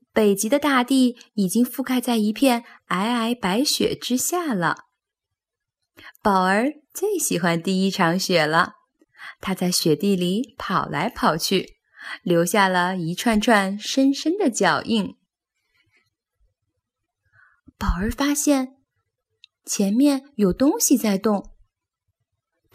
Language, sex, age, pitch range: Chinese, female, 10-29, 190-295 Hz